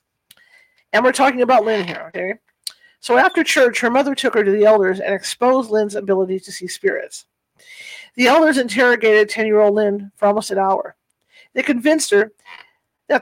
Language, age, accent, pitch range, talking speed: English, 50-69, American, 205-255 Hz, 170 wpm